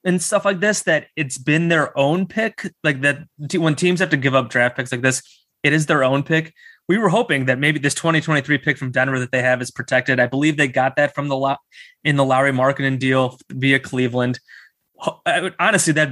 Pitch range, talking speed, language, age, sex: 130-160 Hz, 220 wpm, English, 20-39, male